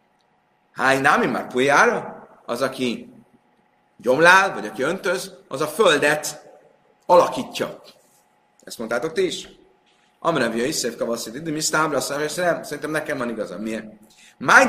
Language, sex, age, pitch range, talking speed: Hungarian, male, 30-49, 135-205 Hz, 130 wpm